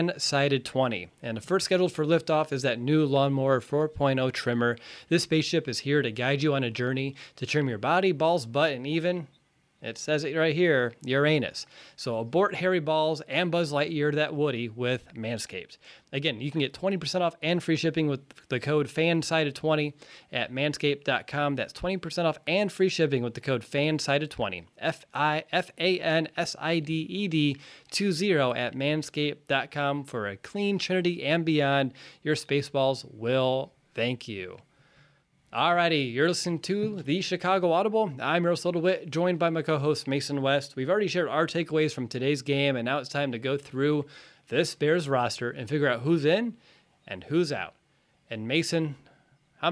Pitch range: 135-165 Hz